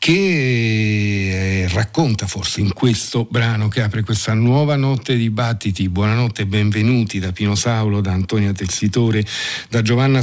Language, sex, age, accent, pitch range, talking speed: Italian, male, 50-69, native, 95-115 Hz, 140 wpm